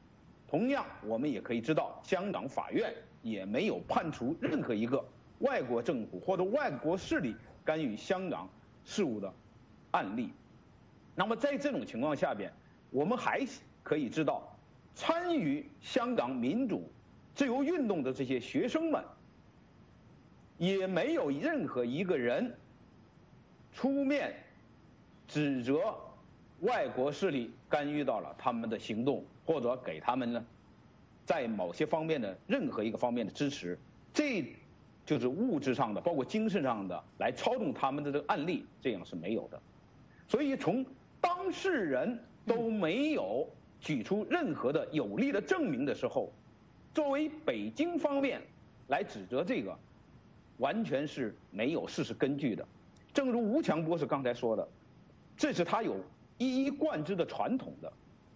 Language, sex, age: English, male, 50-69